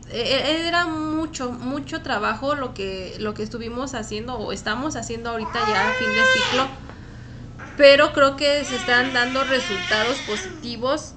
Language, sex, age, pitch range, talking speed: Spanish, female, 20-39, 210-275 Hz, 140 wpm